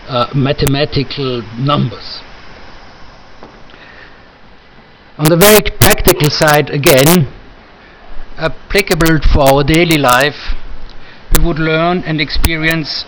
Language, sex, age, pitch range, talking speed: German, male, 60-79, 140-165 Hz, 85 wpm